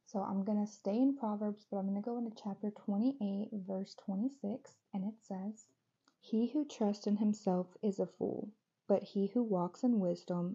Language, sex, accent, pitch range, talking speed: English, female, American, 195-220 Hz, 195 wpm